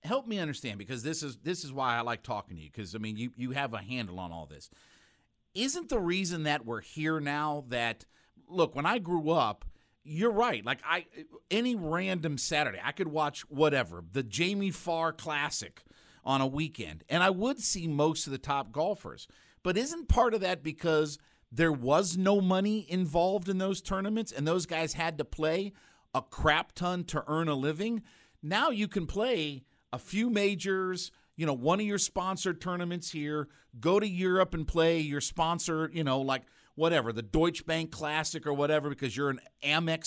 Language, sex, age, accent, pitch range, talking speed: English, male, 50-69, American, 145-185 Hz, 195 wpm